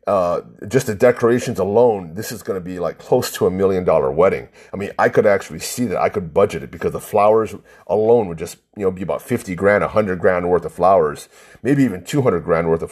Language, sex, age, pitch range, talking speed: English, male, 30-49, 100-135 Hz, 240 wpm